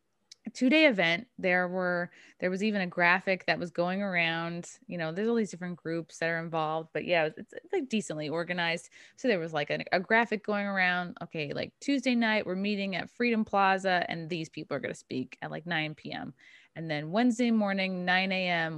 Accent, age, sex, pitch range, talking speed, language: American, 20-39, female, 160-200 Hz, 210 wpm, English